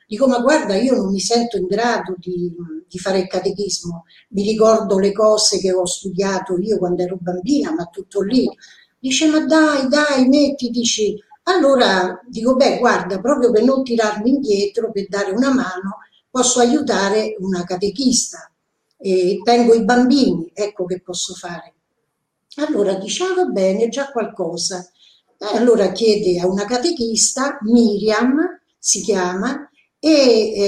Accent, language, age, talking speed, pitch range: native, Italian, 50-69, 145 wpm, 195-260 Hz